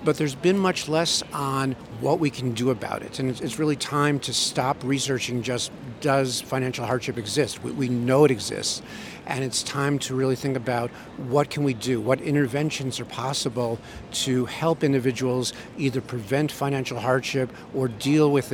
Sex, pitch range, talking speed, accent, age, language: male, 125-140 Hz, 170 wpm, American, 50-69, English